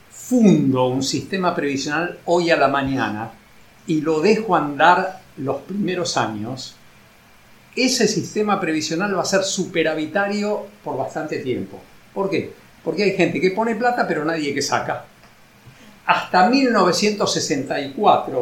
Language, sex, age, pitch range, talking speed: Spanish, male, 50-69, 150-205 Hz, 135 wpm